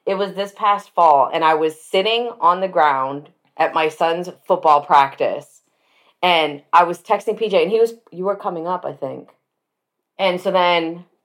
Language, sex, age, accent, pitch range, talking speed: English, female, 30-49, American, 150-180 Hz, 180 wpm